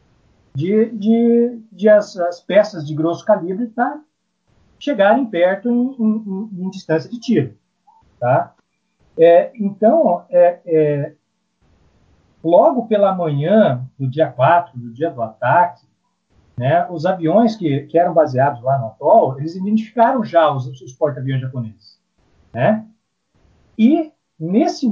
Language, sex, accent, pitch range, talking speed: Portuguese, male, Brazilian, 155-230 Hz, 130 wpm